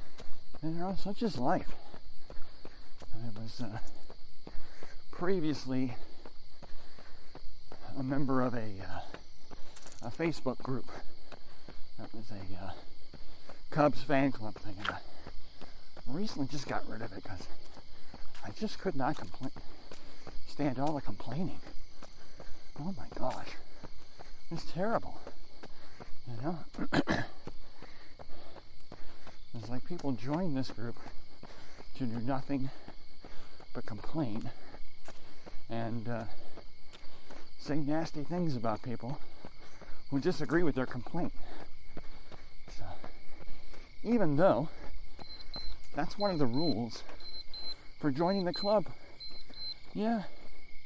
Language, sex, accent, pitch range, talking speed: English, male, American, 110-150 Hz, 100 wpm